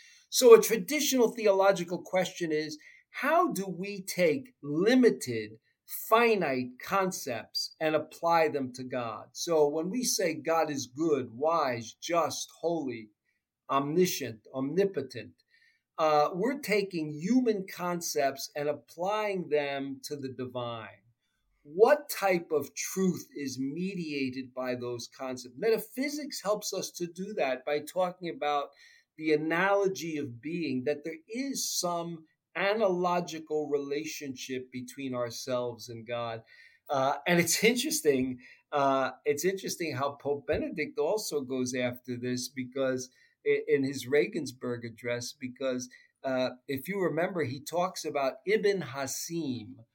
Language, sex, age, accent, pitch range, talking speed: English, male, 50-69, American, 130-190 Hz, 125 wpm